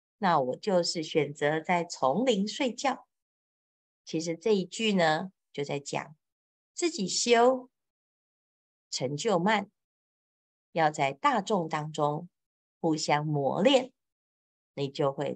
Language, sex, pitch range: Chinese, female, 150-220 Hz